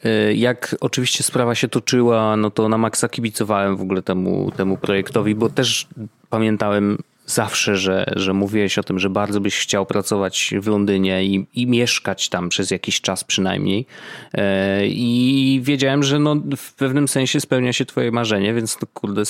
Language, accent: Polish, native